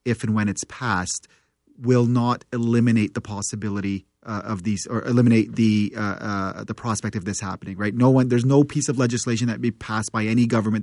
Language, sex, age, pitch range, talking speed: English, male, 30-49, 110-120 Hz, 205 wpm